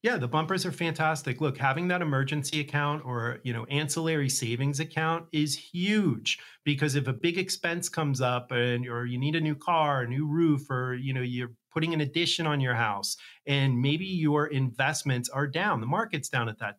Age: 30-49